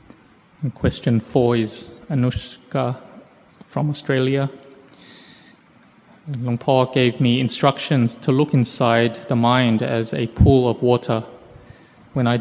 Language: English